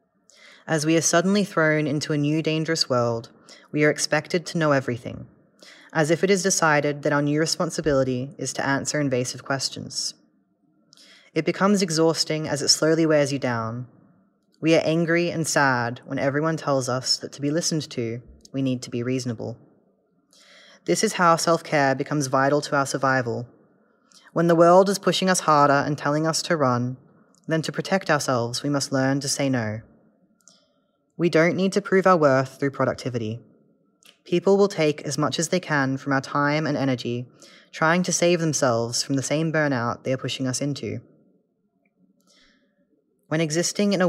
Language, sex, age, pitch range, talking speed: English, female, 20-39, 135-165 Hz, 175 wpm